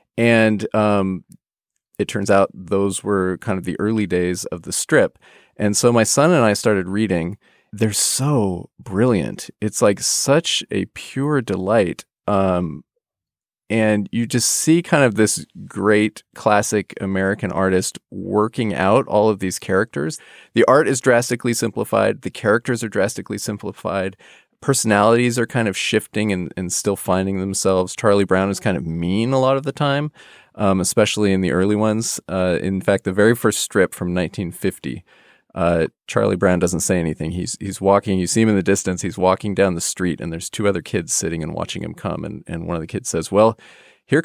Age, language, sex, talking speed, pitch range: 30-49, English, male, 185 wpm, 95-115 Hz